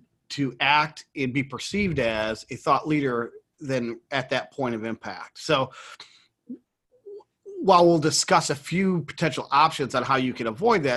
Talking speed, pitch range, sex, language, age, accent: 160 wpm, 125-160 Hz, male, English, 30-49, American